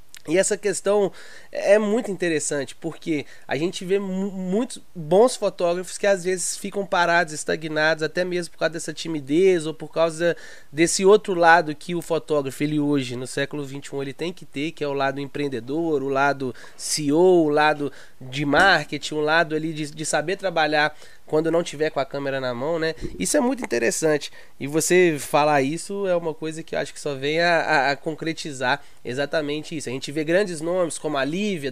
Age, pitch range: 20-39, 145-185 Hz